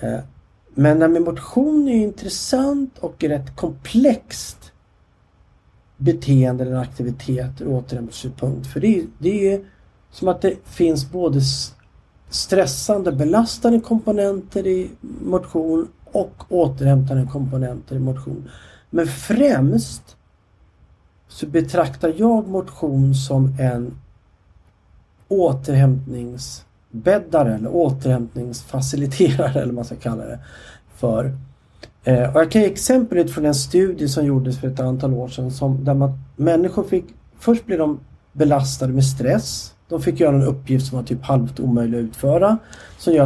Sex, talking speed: male, 125 wpm